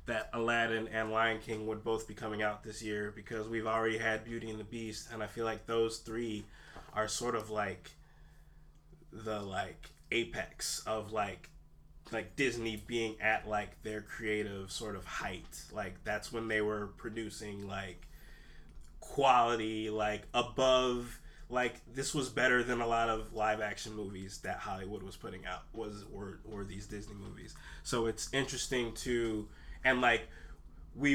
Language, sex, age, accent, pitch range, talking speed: English, male, 20-39, American, 105-120 Hz, 160 wpm